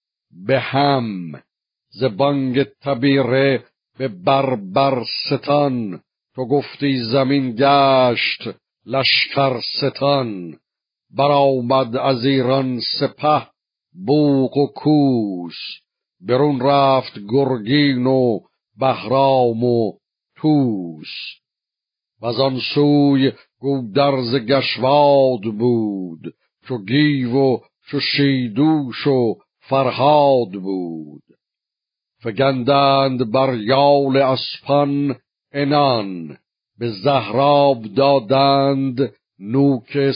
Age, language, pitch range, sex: 60-79, Persian, 120-140 Hz, male